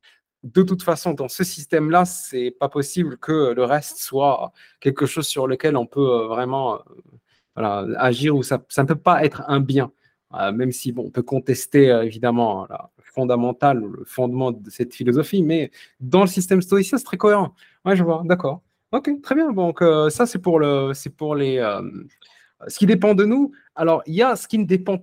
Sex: male